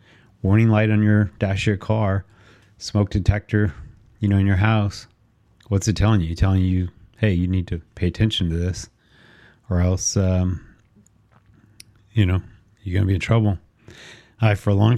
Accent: American